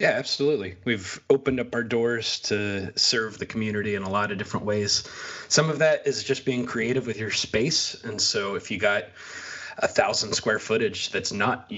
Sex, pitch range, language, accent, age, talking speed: male, 100-130 Hz, English, American, 20-39, 195 wpm